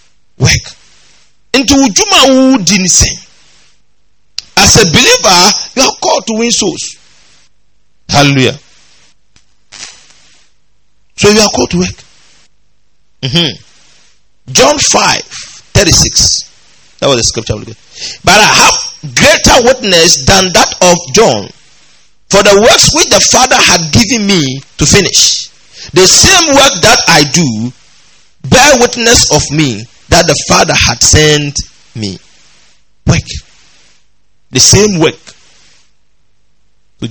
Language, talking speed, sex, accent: English, 110 wpm, male, Nigerian